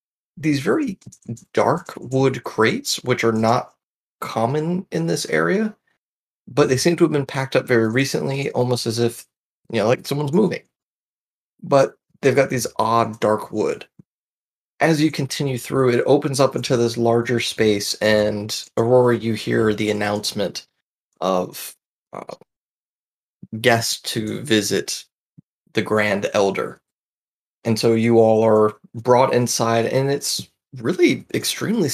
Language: English